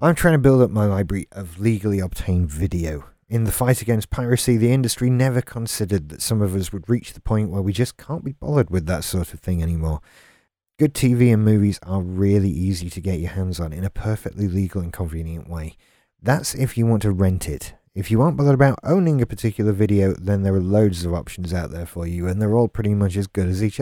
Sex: male